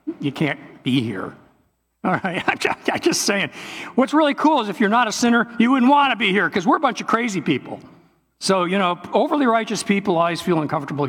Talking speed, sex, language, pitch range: 215 wpm, male, English, 145-200 Hz